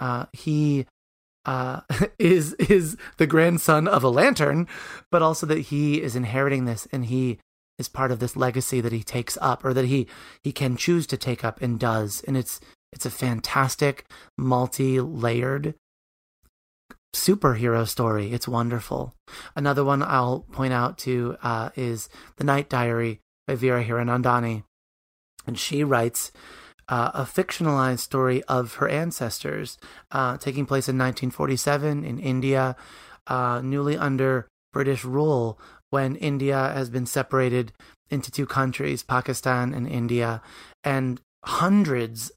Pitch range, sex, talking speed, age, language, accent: 120-140 Hz, male, 140 wpm, 30-49, English, American